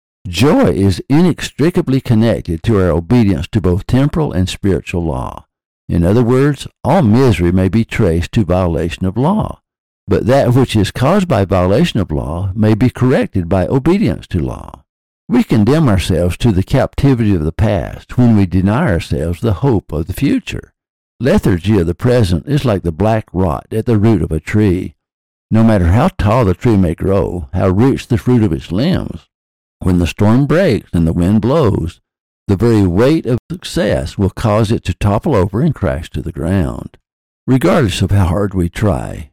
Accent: American